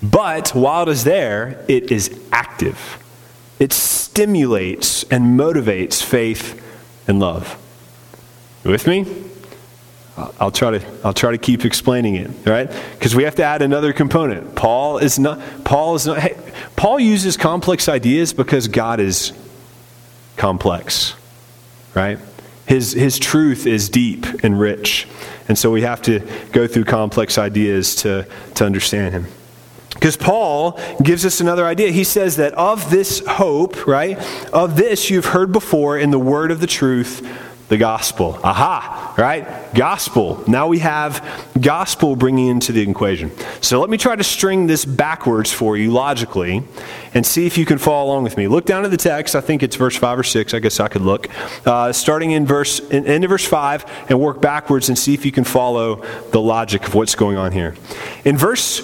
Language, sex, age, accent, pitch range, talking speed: English, male, 30-49, American, 110-150 Hz, 175 wpm